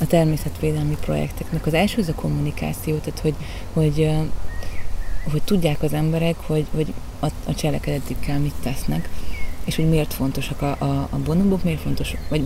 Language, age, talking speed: Hungarian, 30-49, 160 wpm